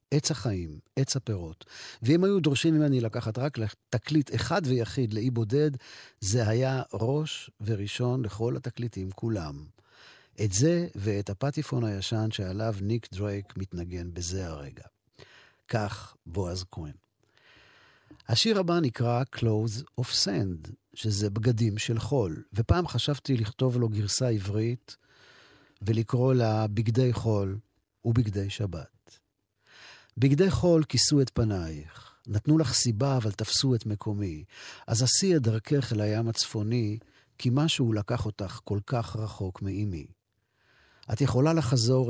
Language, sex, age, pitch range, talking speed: Hebrew, male, 50-69, 100-125 Hz, 125 wpm